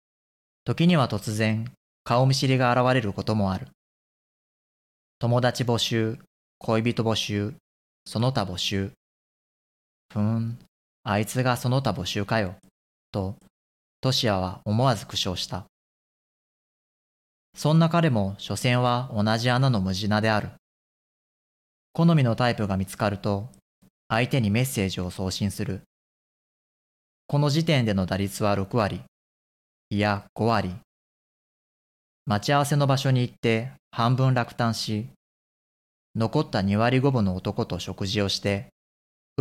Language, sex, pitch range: Japanese, male, 95-125 Hz